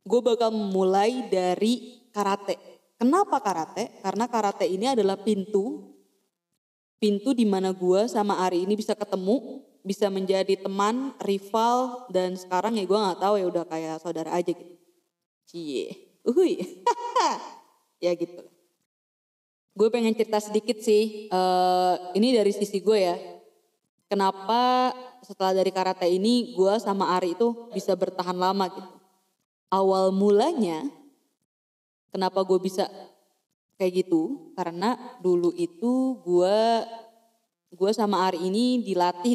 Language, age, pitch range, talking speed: Indonesian, 20-39, 180-225 Hz, 125 wpm